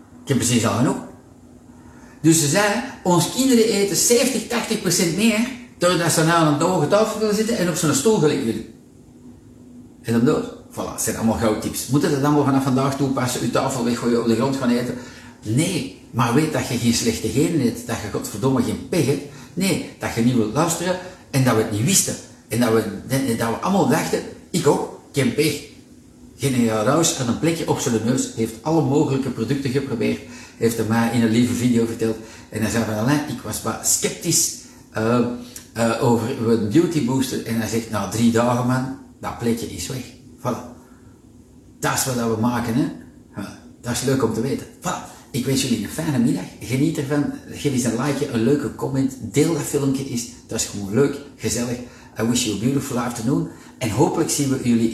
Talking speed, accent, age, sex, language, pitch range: 205 wpm, Dutch, 50-69, male, Dutch, 115-150 Hz